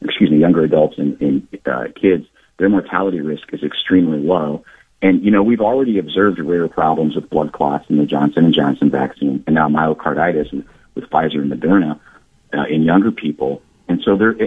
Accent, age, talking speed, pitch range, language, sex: American, 50-69, 190 wpm, 75-95 Hz, English, male